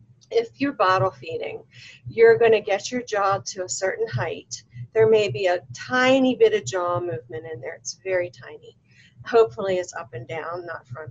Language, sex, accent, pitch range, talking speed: English, female, American, 150-230 Hz, 190 wpm